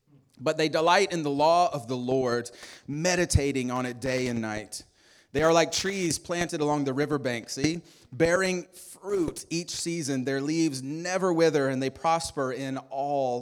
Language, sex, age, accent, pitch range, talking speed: English, male, 30-49, American, 130-160 Hz, 165 wpm